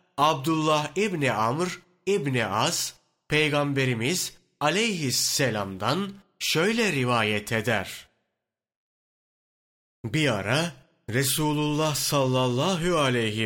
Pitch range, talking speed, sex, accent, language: 120-155 Hz, 65 wpm, male, native, Turkish